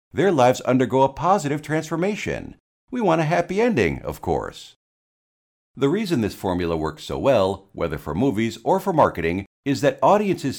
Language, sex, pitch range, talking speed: English, male, 100-160 Hz, 165 wpm